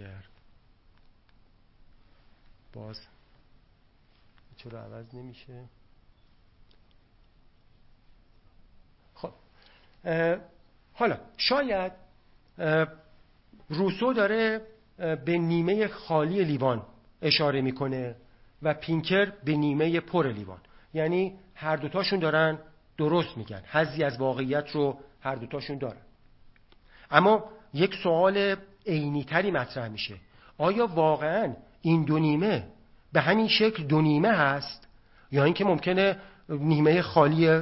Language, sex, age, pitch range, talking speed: Persian, male, 50-69, 115-175 Hz, 90 wpm